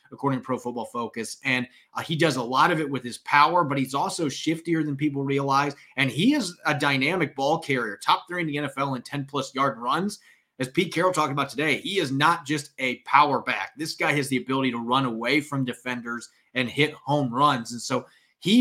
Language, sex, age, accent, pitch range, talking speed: English, male, 30-49, American, 125-155 Hz, 225 wpm